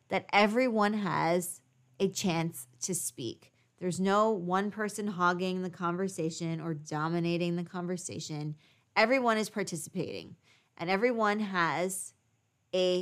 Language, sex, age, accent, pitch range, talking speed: English, female, 20-39, American, 160-195 Hz, 115 wpm